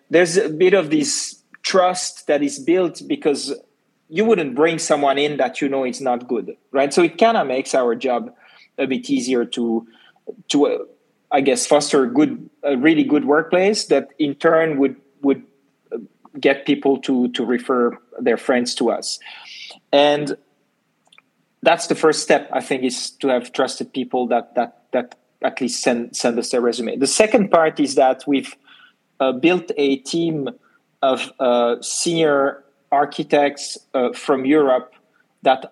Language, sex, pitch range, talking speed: English, male, 130-160 Hz, 165 wpm